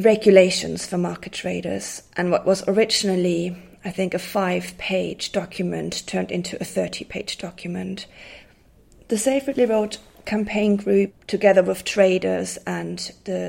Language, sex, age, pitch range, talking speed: English, female, 30-49, 175-195 Hz, 125 wpm